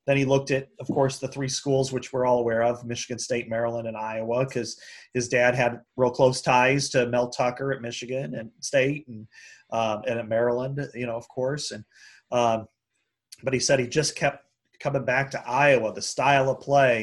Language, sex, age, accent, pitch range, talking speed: English, male, 30-49, American, 115-140 Hz, 205 wpm